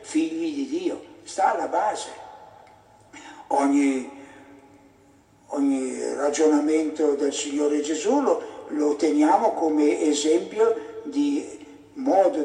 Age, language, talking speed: 60-79, Italian, 90 wpm